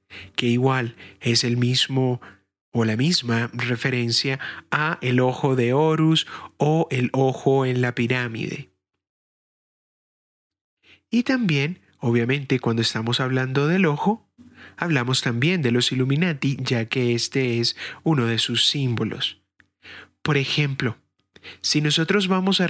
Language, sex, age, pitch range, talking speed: Spanish, male, 30-49, 120-150 Hz, 125 wpm